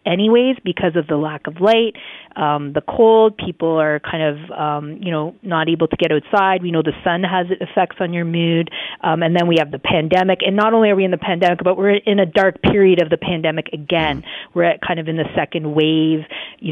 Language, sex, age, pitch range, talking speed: English, female, 40-59, 150-175 Hz, 235 wpm